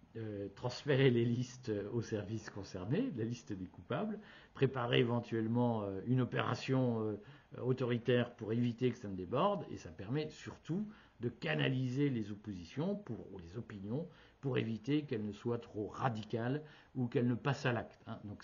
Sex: male